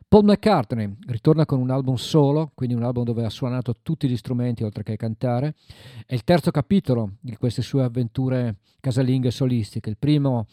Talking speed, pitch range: 175 wpm, 120-150 Hz